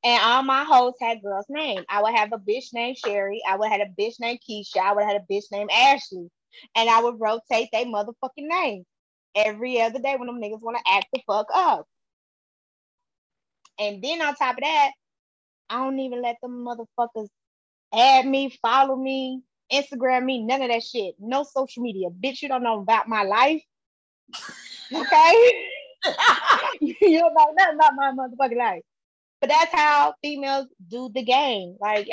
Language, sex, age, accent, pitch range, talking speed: English, female, 20-39, American, 215-270 Hz, 180 wpm